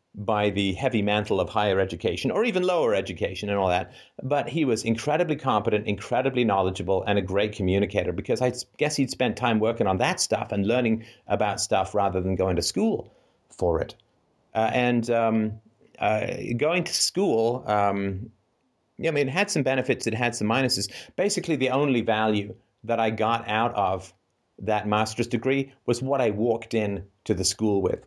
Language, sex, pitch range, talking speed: English, male, 105-135 Hz, 180 wpm